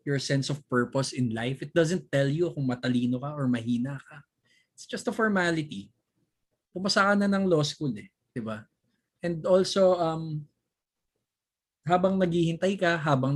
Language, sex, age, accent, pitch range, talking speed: Filipino, male, 20-39, native, 120-165 Hz, 155 wpm